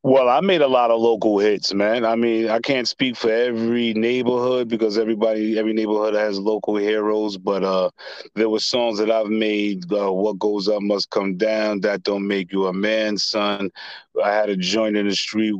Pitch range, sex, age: 100-110 Hz, male, 30-49